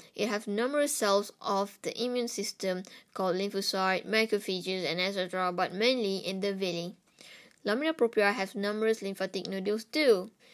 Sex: female